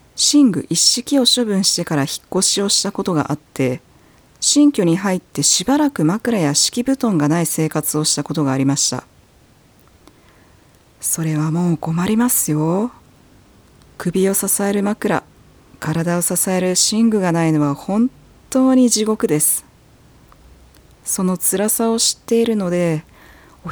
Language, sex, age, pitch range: Japanese, female, 40-59, 150-245 Hz